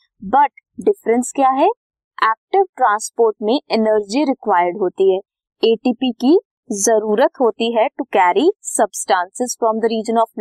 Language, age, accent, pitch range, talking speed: Hindi, 20-39, native, 215-320 Hz, 135 wpm